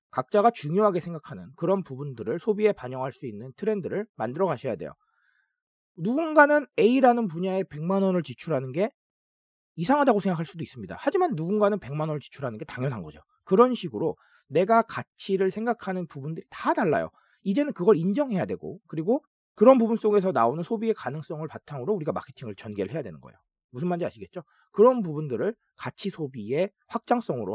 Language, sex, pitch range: Korean, male, 135-215 Hz